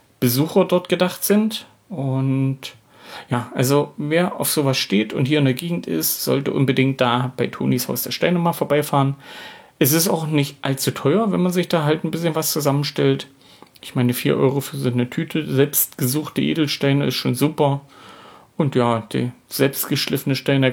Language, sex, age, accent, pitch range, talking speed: German, male, 40-59, German, 130-165 Hz, 175 wpm